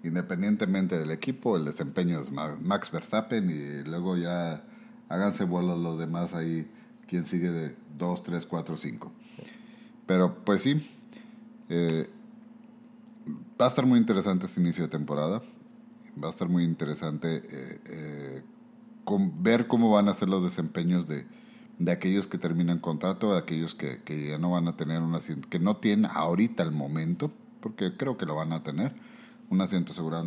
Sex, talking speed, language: male, 165 wpm, Spanish